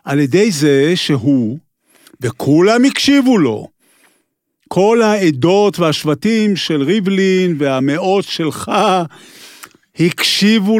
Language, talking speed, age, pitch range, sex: Hebrew, 85 wpm, 50-69, 135-190 Hz, male